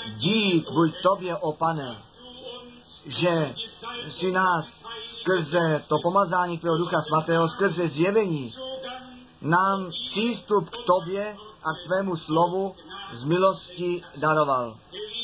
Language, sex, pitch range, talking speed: Czech, male, 165-210 Hz, 105 wpm